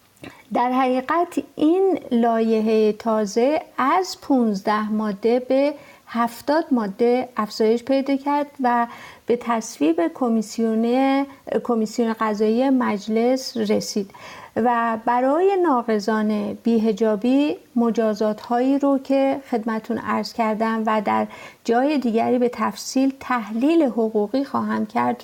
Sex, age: female, 50-69